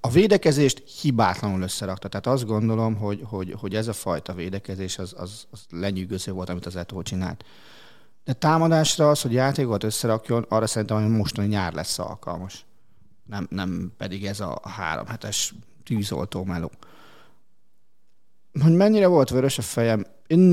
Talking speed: 150 wpm